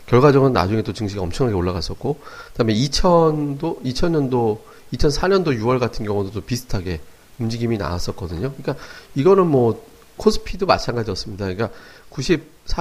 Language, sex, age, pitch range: Korean, male, 40-59, 105-145 Hz